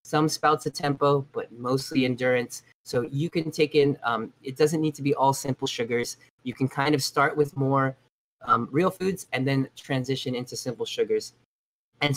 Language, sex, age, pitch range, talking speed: English, male, 20-39, 130-150 Hz, 185 wpm